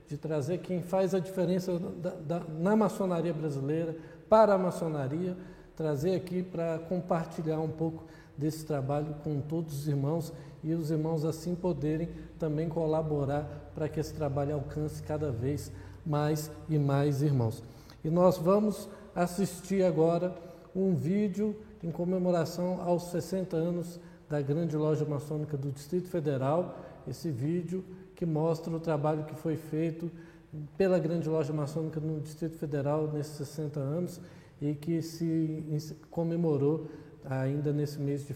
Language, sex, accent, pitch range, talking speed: Portuguese, male, Brazilian, 145-170 Hz, 140 wpm